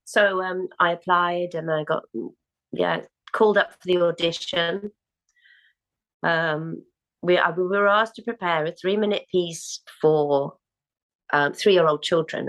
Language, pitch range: English, 170-255 Hz